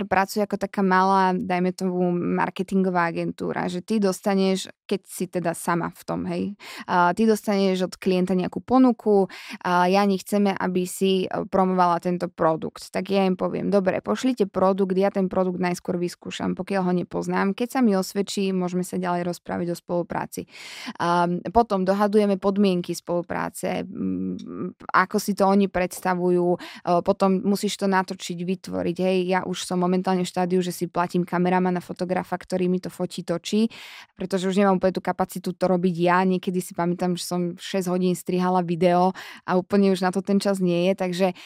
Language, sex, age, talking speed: Slovak, female, 20-39, 170 wpm